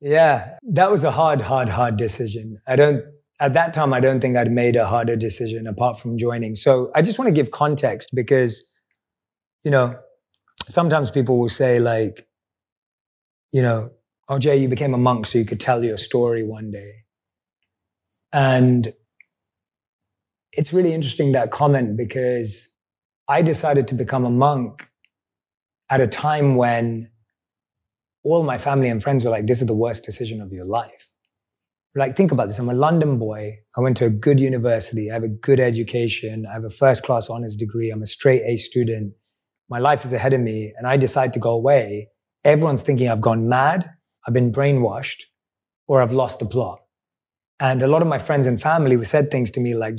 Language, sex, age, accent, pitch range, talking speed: English, male, 30-49, British, 115-140 Hz, 185 wpm